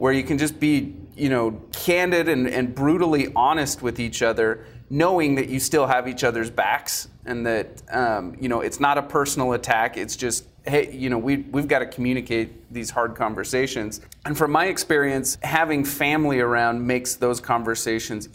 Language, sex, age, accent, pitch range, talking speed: English, male, 30-49, American, 115-140 Hz, 185 wpm